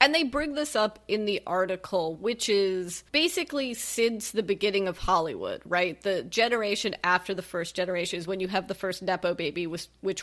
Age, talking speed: 30-49, 190 wpm